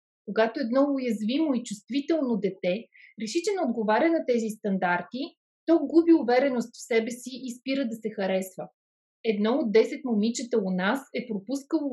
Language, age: Bulgarian, 30-49